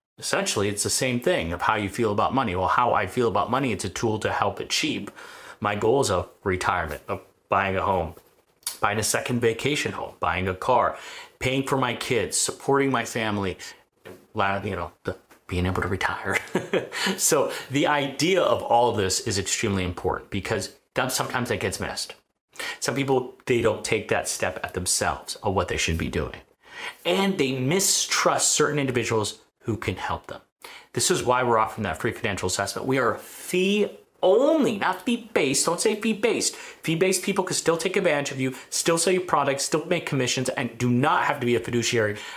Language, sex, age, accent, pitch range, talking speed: English, male, 30-49, American, 115-165 Hz, 190 wpm